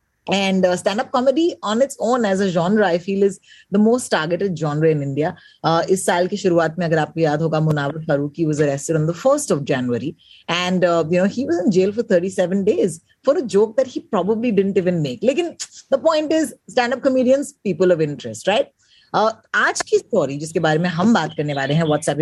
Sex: female